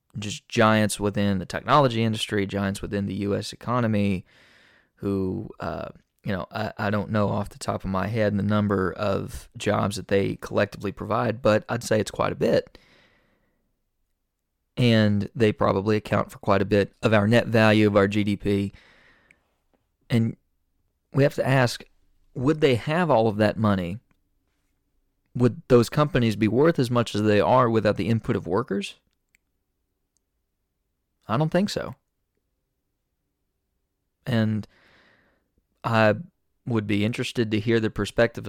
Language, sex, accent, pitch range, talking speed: English, male, American, 95-115 Hz, 150 wpm